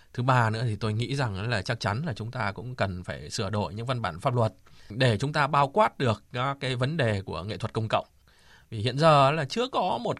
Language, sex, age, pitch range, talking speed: Vietnamese, male, 20-39, 105-135 Hz, 265 wpm